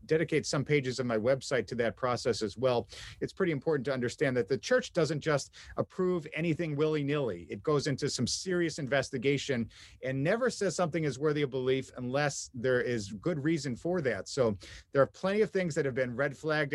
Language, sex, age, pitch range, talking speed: English, male, 50-69, 125-155 Hz, 200 wpm